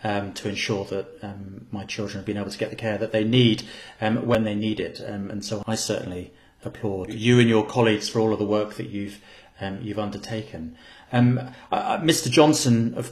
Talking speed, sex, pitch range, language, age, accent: 215 wpm, male, 100-125 Hz, English, 40-59, British